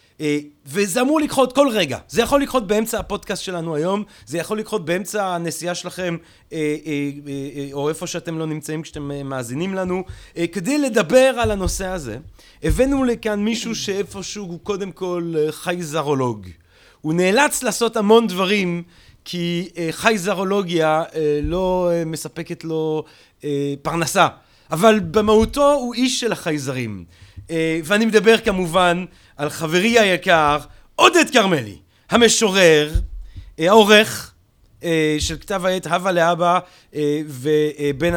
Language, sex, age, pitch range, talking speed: Hebrew, male, 30-49, 155-205 Hz, 115 wpm